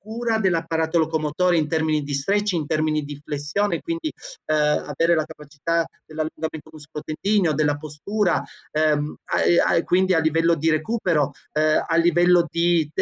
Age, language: 30-49, Italian